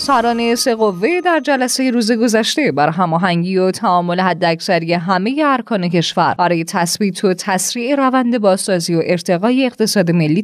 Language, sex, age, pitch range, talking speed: Persian, female, 20-39, 175-240 Hz, 145 wpm